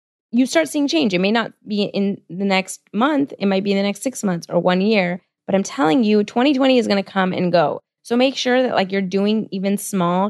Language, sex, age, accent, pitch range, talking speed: English, female, 20-39, American, 175-215 Hz, 250 wpm